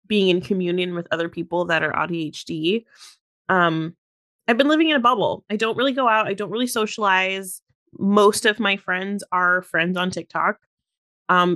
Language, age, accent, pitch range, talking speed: English, 30-49, American, 180-225 Hz, 175 wpm